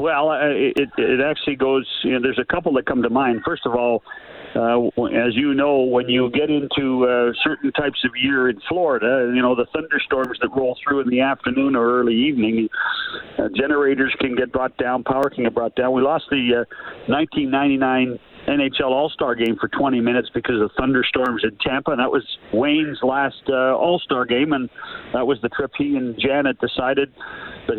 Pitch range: 125-145 Hz